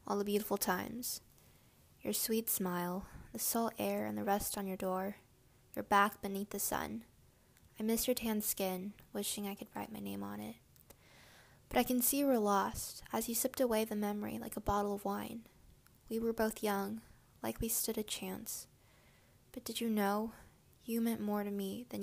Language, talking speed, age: English, 195 wpm, 10-29